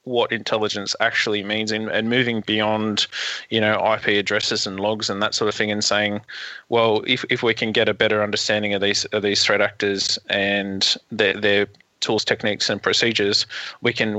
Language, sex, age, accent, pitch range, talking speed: English, male, 20-39, Australian, 105-115 Hz, 190 wpm